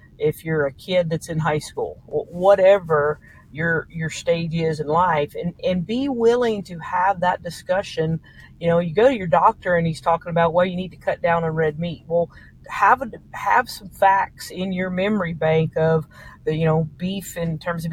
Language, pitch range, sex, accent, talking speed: English, 160-185 Hz, female, American, 205 wpm